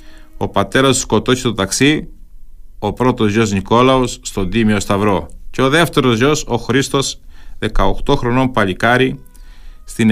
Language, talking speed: Greek, 130 wpm